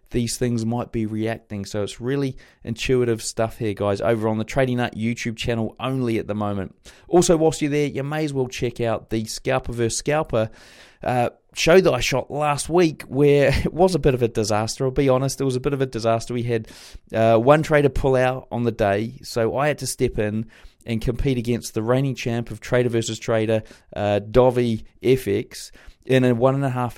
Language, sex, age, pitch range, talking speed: English, male, 20-39, 110-135 Hz, 215 wpm